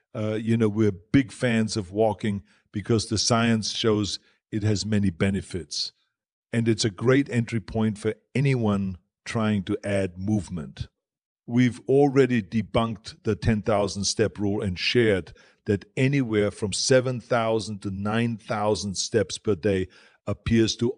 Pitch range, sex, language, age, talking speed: 105-120 Hz, male, English, 50-69, 135 wpm